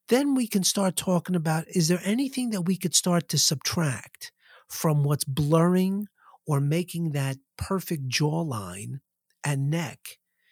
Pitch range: 145-190 Hz